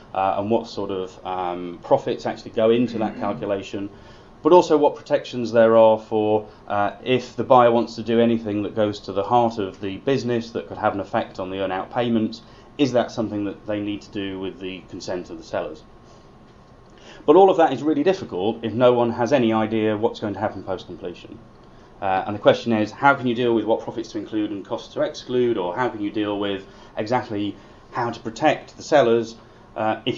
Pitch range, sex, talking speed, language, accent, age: 100-120 Hz, male, 215 wpm, English, British, 30-49